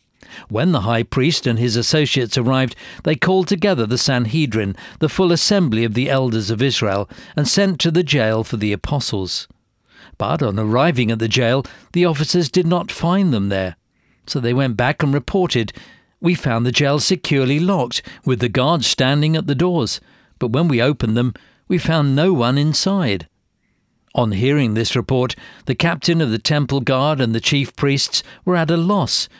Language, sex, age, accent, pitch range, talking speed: English, male, 50-69, British, 120-165 Hz, 180 wpm